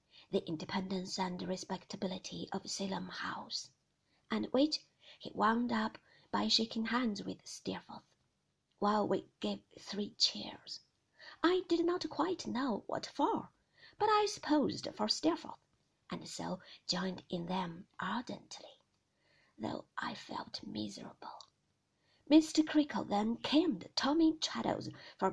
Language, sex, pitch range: Chinese, female, 200-310 Hz